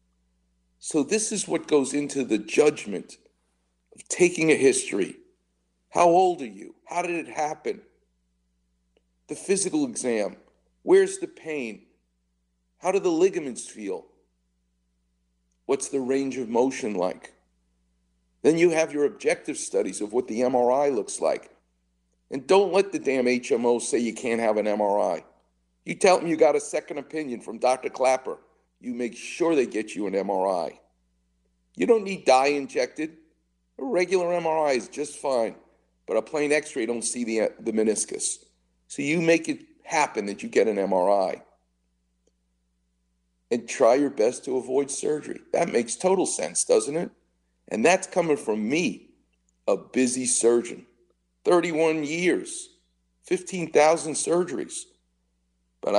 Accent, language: American, English